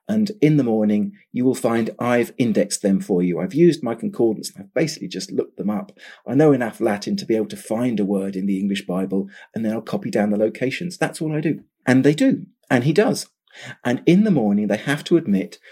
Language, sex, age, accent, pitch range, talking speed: English, male, 40-59, British, 115-155 Hz, 235 wpm